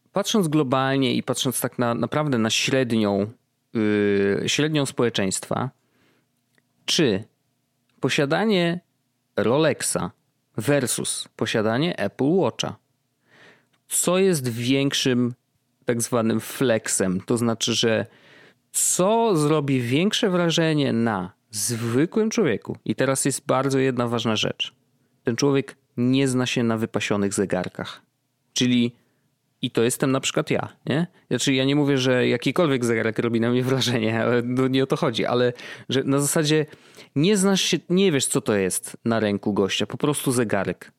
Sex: male